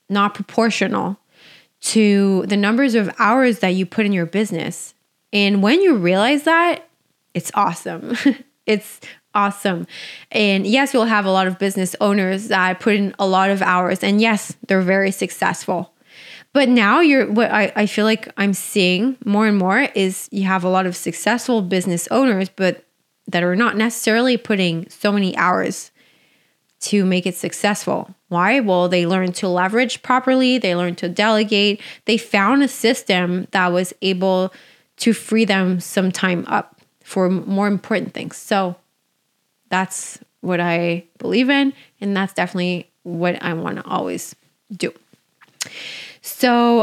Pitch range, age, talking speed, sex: 185-230 Hz, 20-39, 155 wpm, female